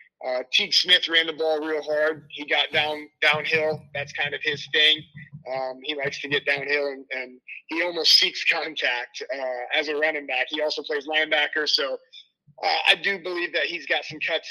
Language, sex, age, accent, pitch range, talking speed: English, male, 30-49, American, 140-160 Hz, 200 wpm